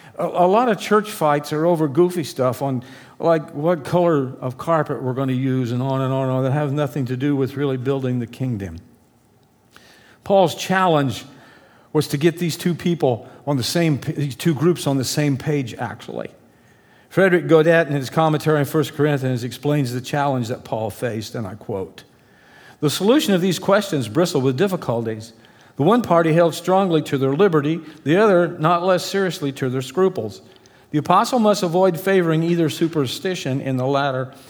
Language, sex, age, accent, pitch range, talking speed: English, male, 50-69, American, 130-175 Hz, 185 wpm